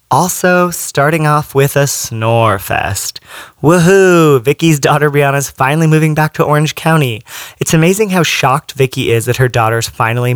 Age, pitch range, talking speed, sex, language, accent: 30-49, 120-150 Hz, 155 wpm, male, English, American